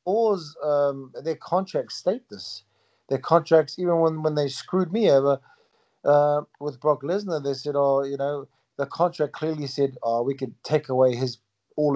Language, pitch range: English, 135-170 Hz